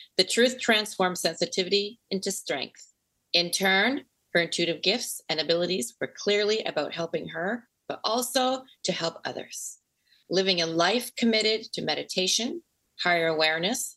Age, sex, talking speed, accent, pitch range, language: 40-59, female, 135 wpm, American, 165-215 Hz, English